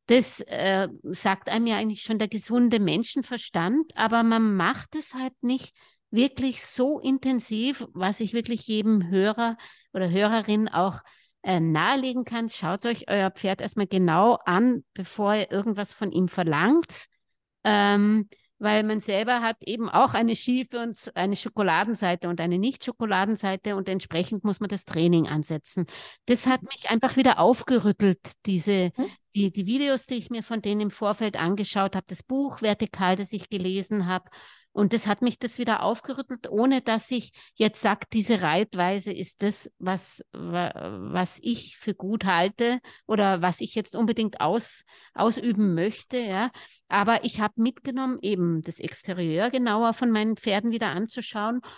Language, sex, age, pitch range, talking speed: German, female, 60-79, 190-235 Hz, 155 wpm